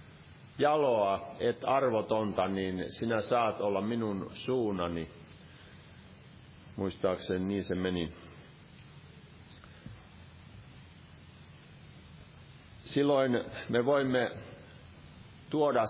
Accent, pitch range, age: native, 105-135 Hz, 50-69